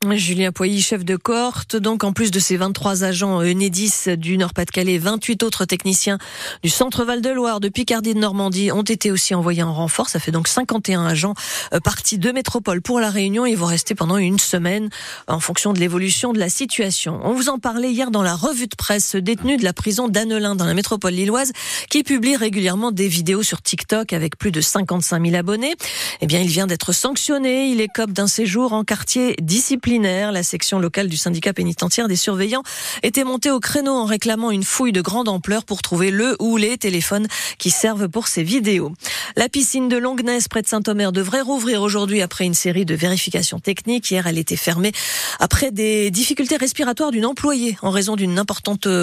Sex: female